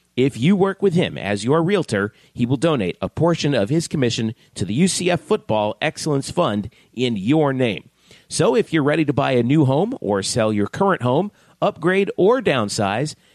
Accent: American